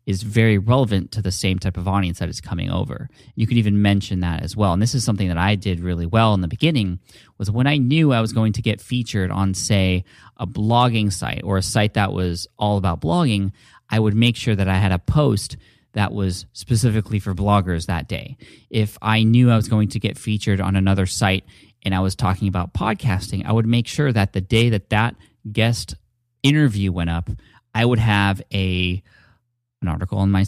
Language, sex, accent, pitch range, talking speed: English, male, American, 95-120 Hz, 215 wpm